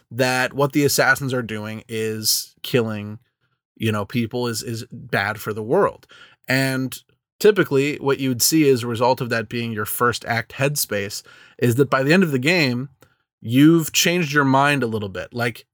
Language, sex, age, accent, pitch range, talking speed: English, male, 20-39, American, 115-145 Hz, 185 wpm